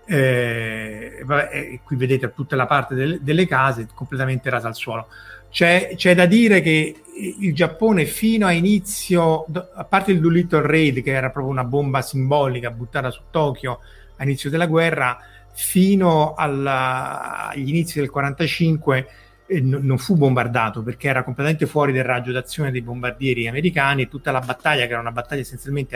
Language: Italian